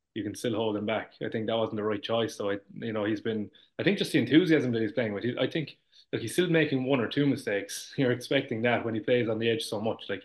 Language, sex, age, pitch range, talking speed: English, male, 20-39, 110-125 Hz, 295 wpm